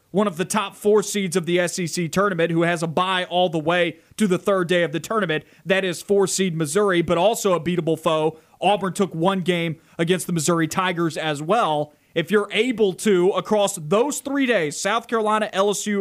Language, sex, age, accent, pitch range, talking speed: English, male, 30-49, American, 170-215 Hz, 200 wpm